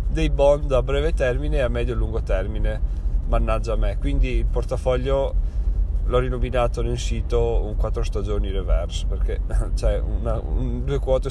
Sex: male